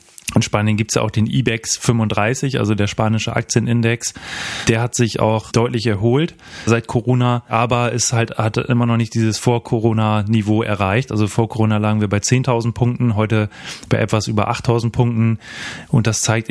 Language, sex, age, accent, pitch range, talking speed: German, male, 30-49, German, 110-120 Hz, 175 wpm